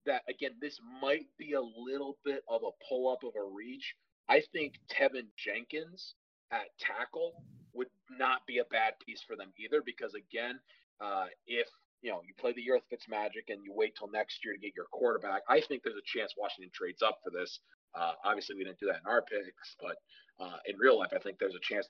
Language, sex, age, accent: English, male, 30-49, American